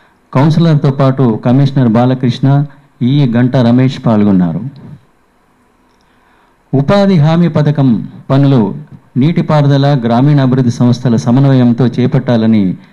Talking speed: 80 wpm